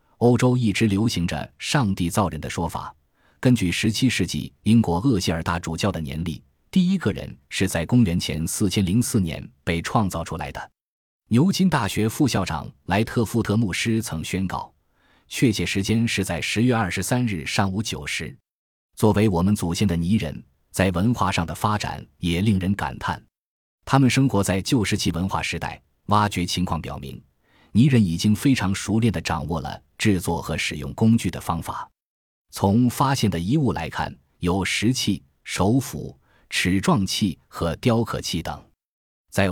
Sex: male